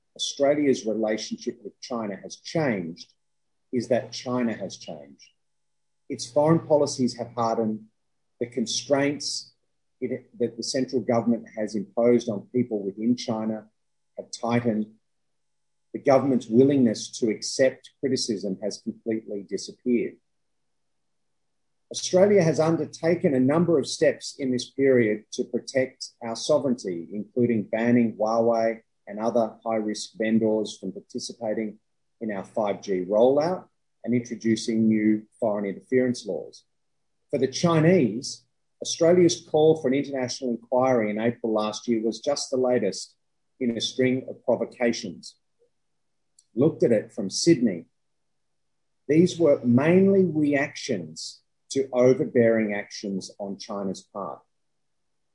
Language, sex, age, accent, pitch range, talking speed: English, male, 40-59, Australian, 110-135 Hz, 120 wpm